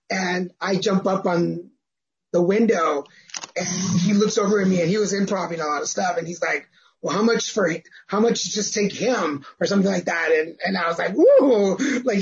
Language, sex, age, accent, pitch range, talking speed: English, male, 30-49, American, 185-245 Hz, 225 wpm